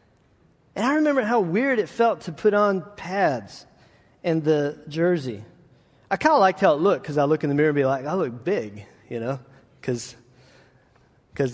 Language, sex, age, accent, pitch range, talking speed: English, male, 30-49, American, 125-165 Hz, 185 wpm